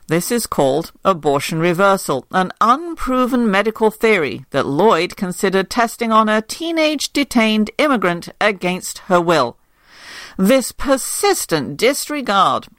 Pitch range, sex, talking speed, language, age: 165-250 Hz, female, 115 wpm, English, 50-69